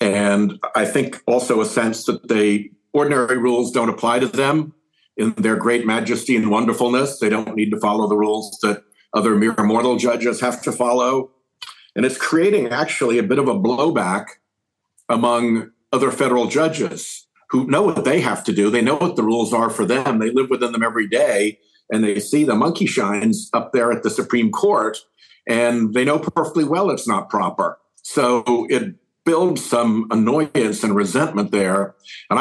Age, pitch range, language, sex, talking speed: 50-69, 110-145 Hz, English, male, 180 wpm